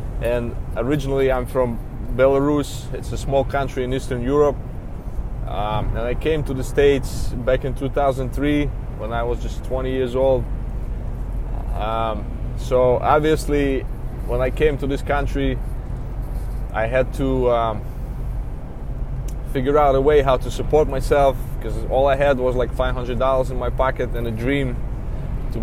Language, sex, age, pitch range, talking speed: English, male, 20-39, 115-135 Hz, 150 wpm